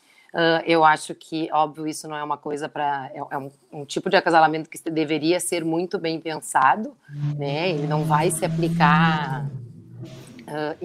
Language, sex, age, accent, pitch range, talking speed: Portuguese, female, 30-49, Brazilian, 155-185 Hz, 165 wpm